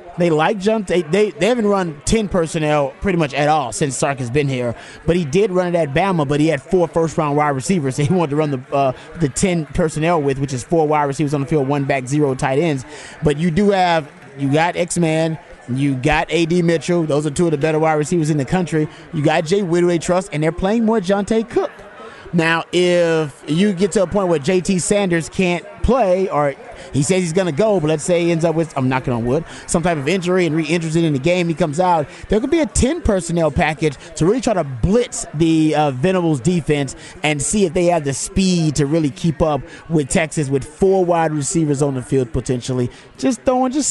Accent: American